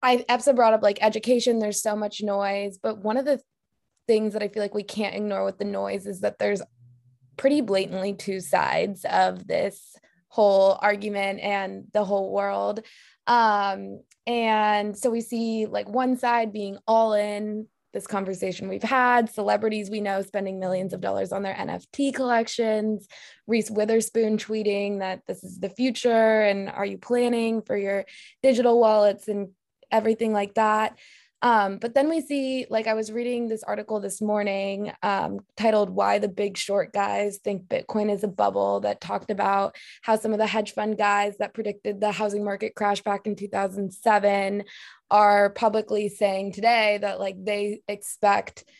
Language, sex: English, female